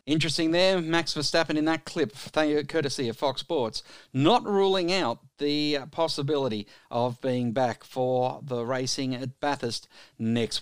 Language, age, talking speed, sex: English, 50-69, 155 wpm, male